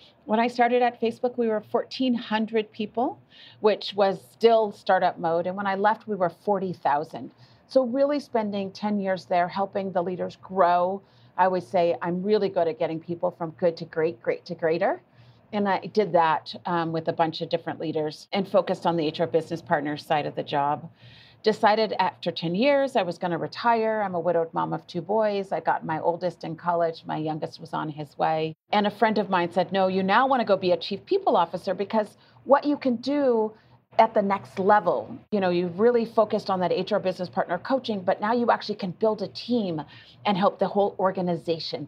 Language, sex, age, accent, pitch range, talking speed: English, female, 40-59, American, 170-220 Hz, 210 wpm